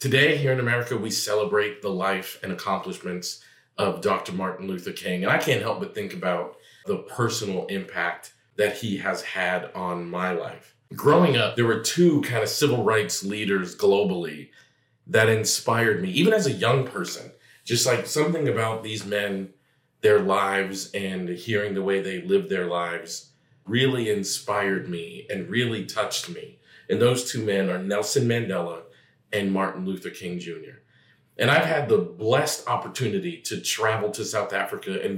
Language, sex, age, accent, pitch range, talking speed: English, male, 40-59, American, 95-125 Hz, 165 wpm